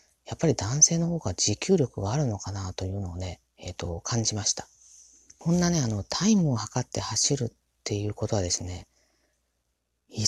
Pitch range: 95-125 Hz